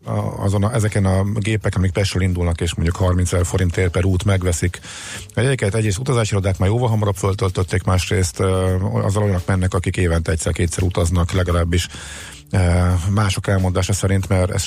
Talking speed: 160 wpm